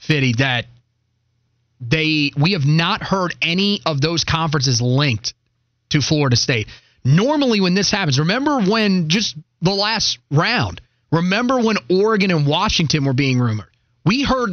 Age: 30-49